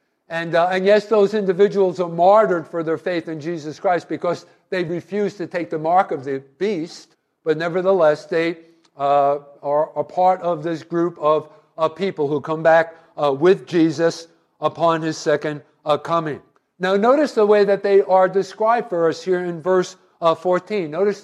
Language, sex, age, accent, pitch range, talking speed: English, male, 50-69, American, 165-205 Hz, 180 wpm